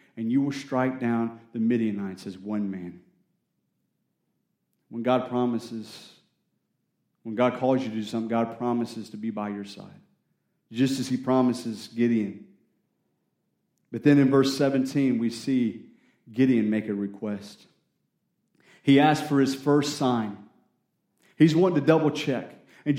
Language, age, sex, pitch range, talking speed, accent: English, 40-59, male, 120-170 Hz, 145 wpm, American